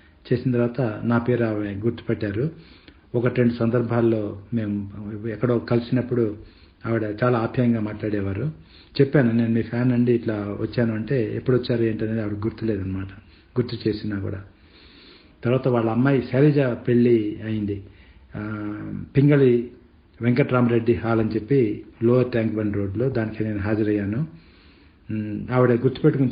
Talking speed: 115 wpm